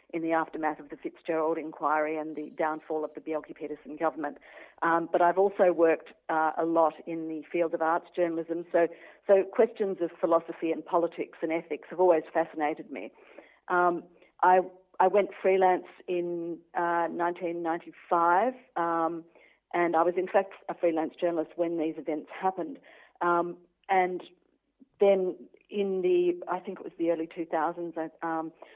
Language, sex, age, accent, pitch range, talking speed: English, female, 50-69, Australian, 155-175 Hz, 160 wpm